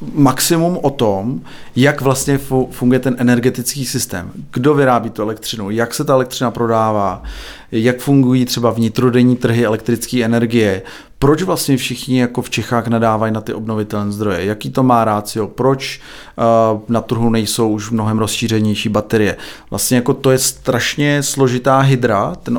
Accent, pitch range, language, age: native, 115-135 Hz, Czech, 30-49